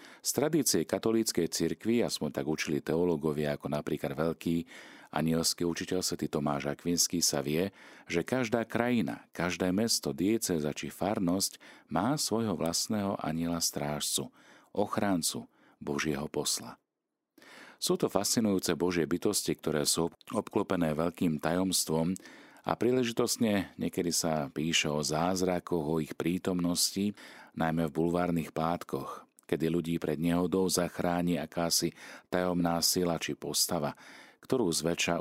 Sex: male